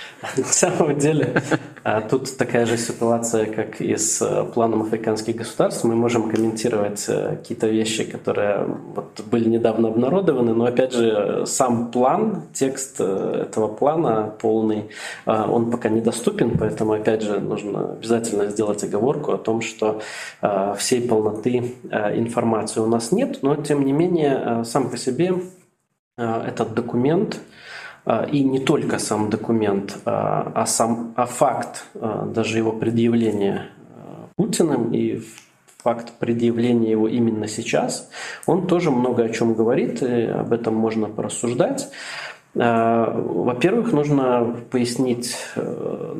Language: Russian